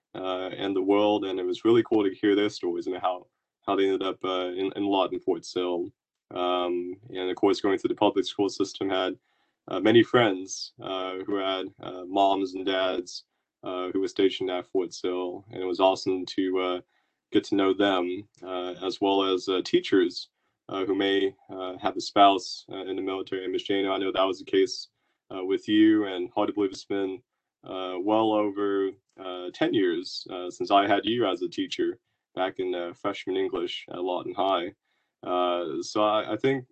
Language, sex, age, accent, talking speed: English, male, 20-39, American, 210 wpm